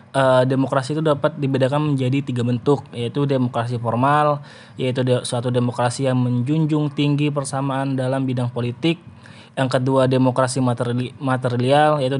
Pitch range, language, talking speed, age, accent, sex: 125-140 Hz, Indonesian, 125 wpm, 20-39, native, male